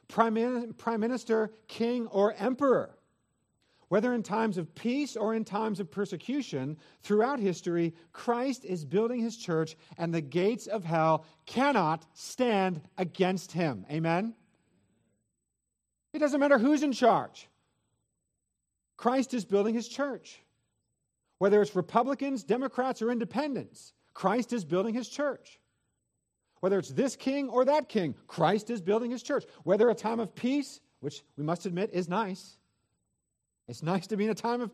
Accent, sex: American, male